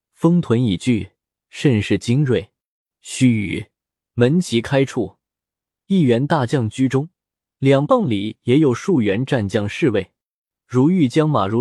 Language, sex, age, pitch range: Chinese, male, 20-39, 110-160 Hz